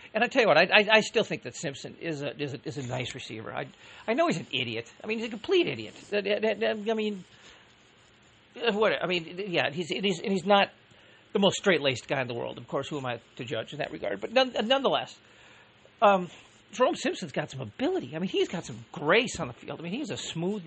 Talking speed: 245 wpm